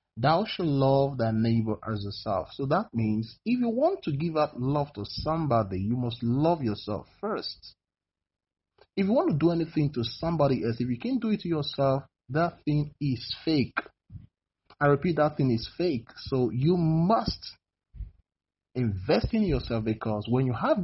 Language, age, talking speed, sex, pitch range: English, 30-49, 175 wpm, male, 110-175 Hz